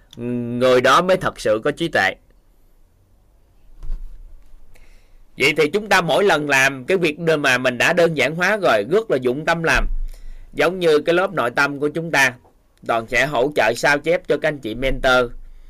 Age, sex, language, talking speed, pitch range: 20-39, male, Vietnamese, 185 wpm, 120-170 Hz